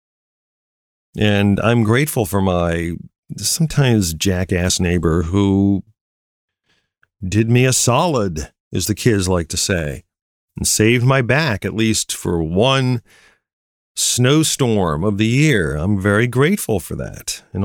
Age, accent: 40-59, American